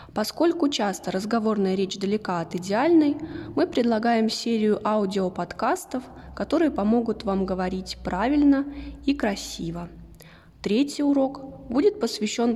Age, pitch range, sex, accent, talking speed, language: 20-39, 190-270 Hz, female, native, 105 wpm, Russian